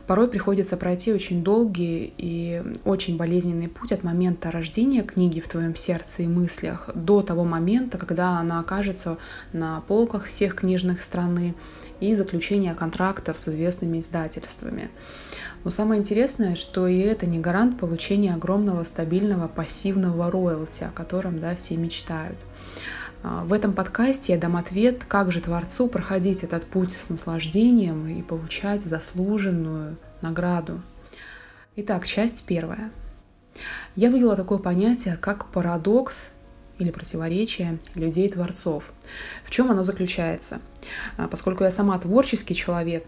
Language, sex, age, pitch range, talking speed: Russian, female, 20-39, 165-200 Hz, 125 wpm